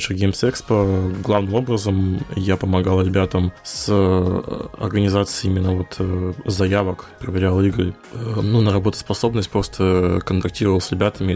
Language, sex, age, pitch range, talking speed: Russian, male, 20-39, 95-115 Hz, 110 wpm